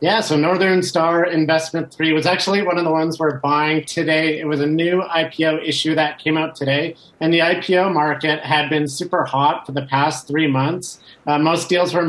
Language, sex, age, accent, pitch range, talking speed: English, male, 30-49, American, 145-165 Hz, 210 wpm